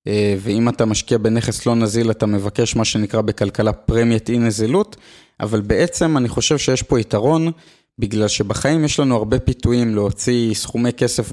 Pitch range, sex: 110-135 Hz, male